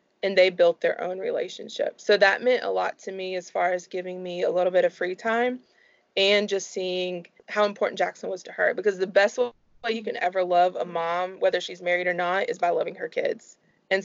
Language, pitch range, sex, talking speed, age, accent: English, 180-225 Hz, female, 230 wpm, 20-39, American